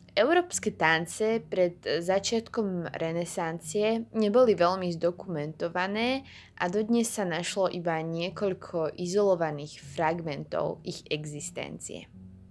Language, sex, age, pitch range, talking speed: Slovak, female, 20-39, 165-220 Hz, 85 wpm